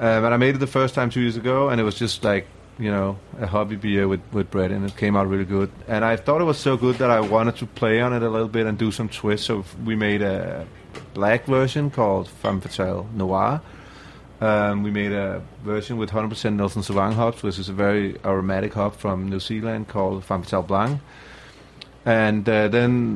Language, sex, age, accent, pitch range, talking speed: English, male, 30-49, Danish, 100-115 Hz, 225 wpm